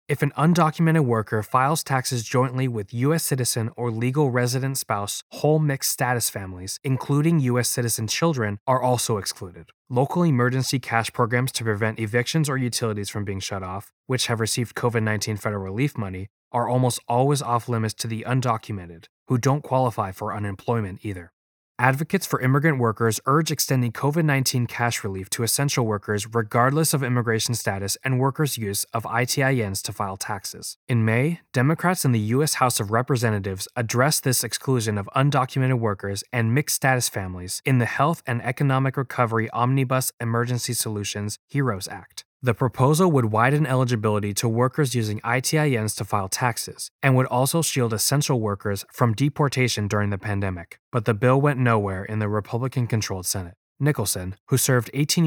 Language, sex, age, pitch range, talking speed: English, male, 20-39, 110-135 Hz, 160 wpm